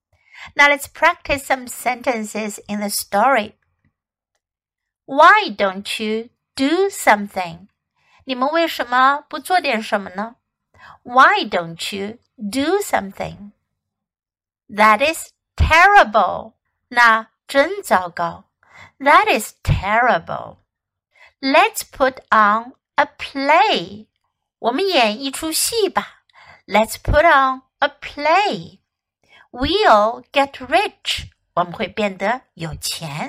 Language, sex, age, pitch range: Chinese, female, 60-79, 215-330 Hz